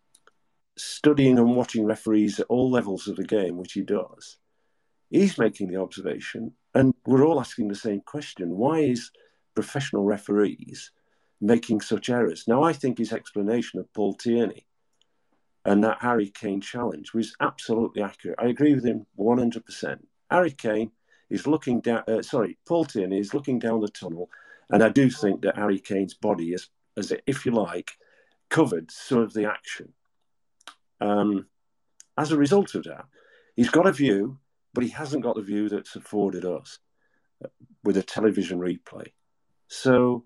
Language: English